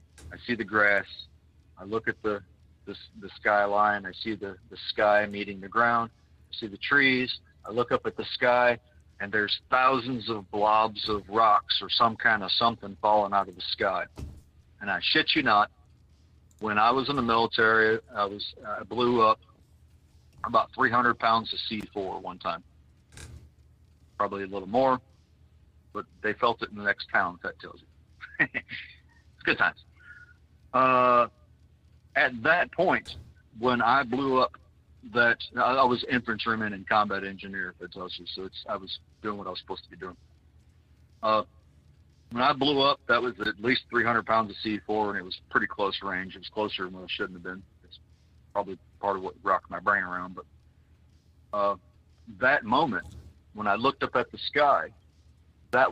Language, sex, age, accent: English, male, 40-59, American